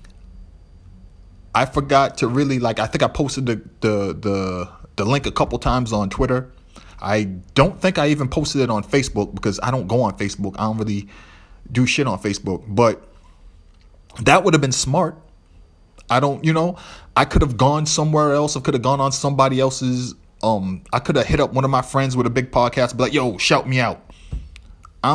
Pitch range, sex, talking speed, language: 90-135 Hz, male, 205 wpm, English